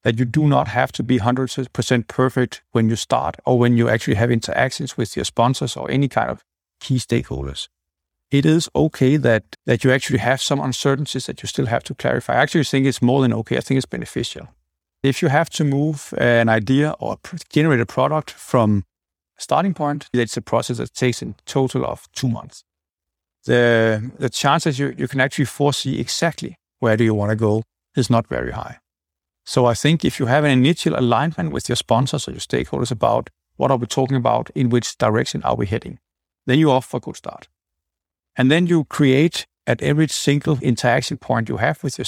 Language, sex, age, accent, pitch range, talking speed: English, male, 60-79, Danish, 105-140 Hz, 205 wpm